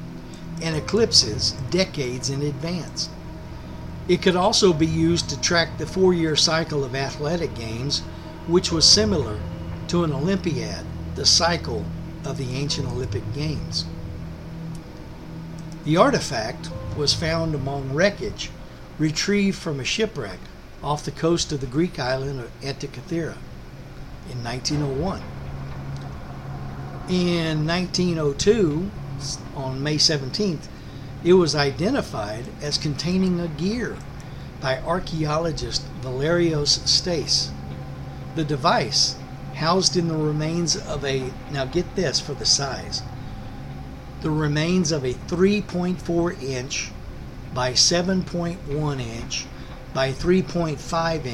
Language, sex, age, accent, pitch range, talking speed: English, male, 60-79, American, 115-165 Hz, 110 wpm